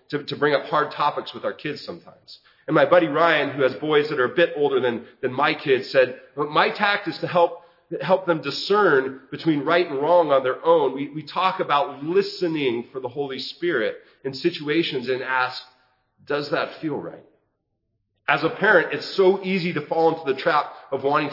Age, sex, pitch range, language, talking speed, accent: 40-59, male, 130-175 Hz, English, 205 wpm, American